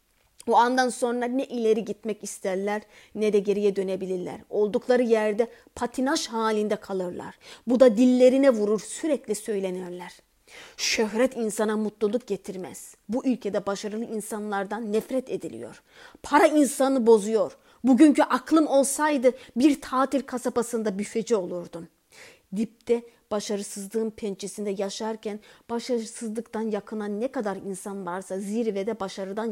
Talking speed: 110 wpm